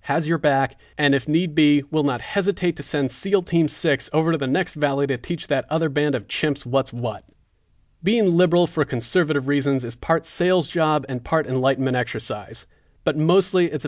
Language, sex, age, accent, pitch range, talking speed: English, male, 40-59, American, 125-155 Hz, 195 wpm